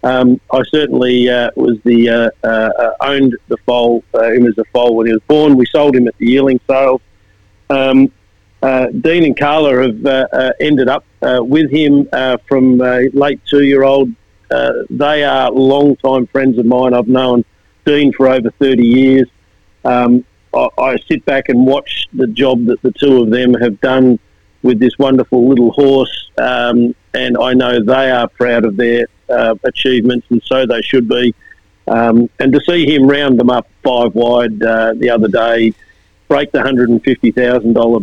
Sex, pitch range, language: male, 115-135 Hz, English